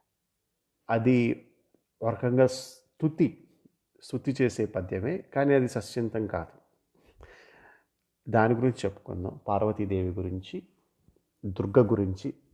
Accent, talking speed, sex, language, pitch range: native, 85 wpm, male, Telugu, 100-130 Hz